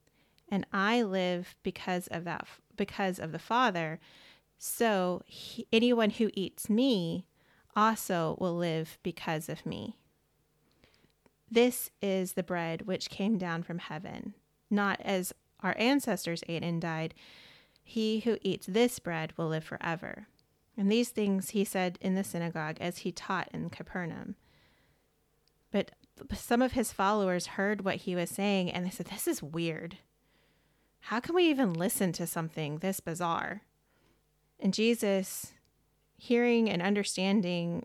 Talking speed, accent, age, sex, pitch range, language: 140 wpm, American, 30-49, female, 175-220 Hz, English